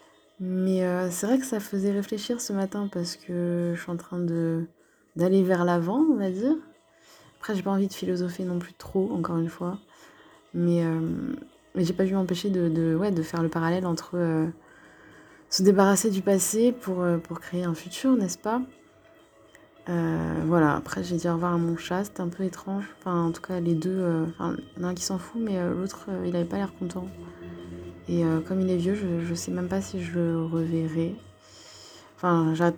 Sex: female